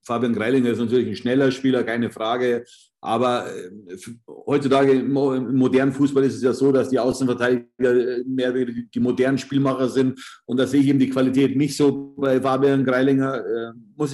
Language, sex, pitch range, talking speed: German, male, 120-135 Hz, 170 wpm